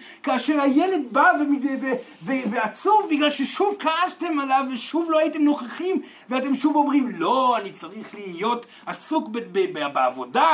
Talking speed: 150 wpm